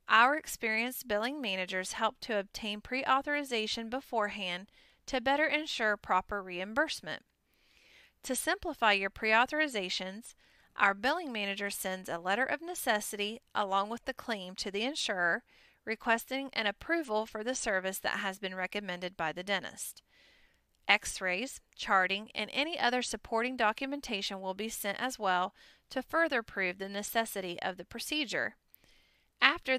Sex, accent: female, American